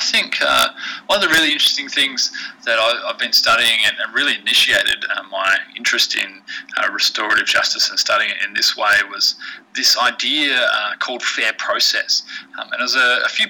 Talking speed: 200 wpm